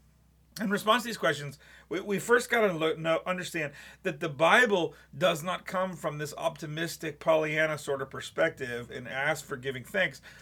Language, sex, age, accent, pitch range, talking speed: English, male, 40-59, American, 140-180 Hz, 165 wpm